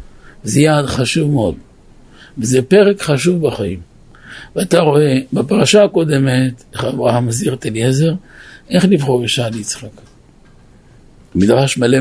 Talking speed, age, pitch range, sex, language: 105 wpm, 50-69, 125-170 Hz, male, Hebrew